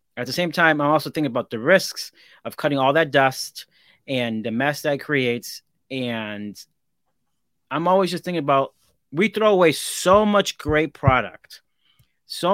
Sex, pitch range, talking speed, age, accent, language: male, 130-165 Hz, 165 wpm, 30-49, American, English